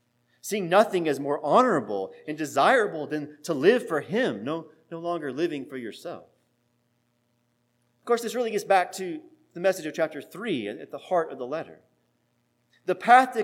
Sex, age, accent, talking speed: male, 30-49, American, 175 wpm